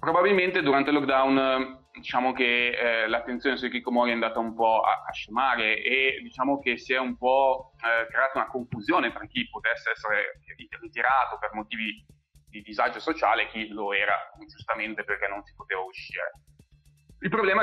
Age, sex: 30-49, male